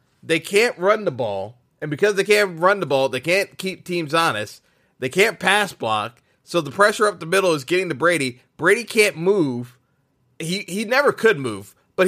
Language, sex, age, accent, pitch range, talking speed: English, male, 30-49, American, 150-210 Hz, 200 wpm